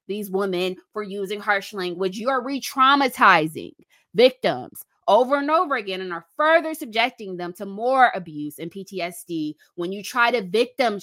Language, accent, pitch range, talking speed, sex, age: English, American, 190-260 Hz, 160 wpm, female, 20-39